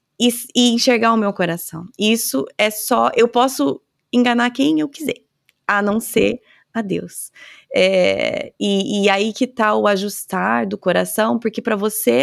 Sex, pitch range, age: female, 200-260 Hz, 20-39